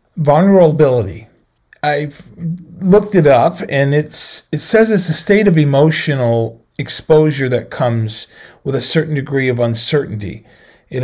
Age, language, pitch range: 40-59, English, 115-160 Hz